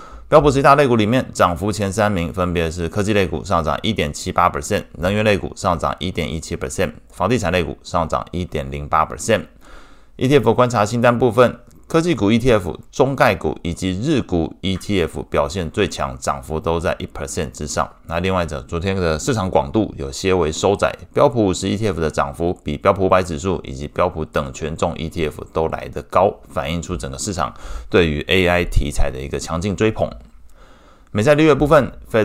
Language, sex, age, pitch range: Chinese, male, 20-39, 80-105 Hz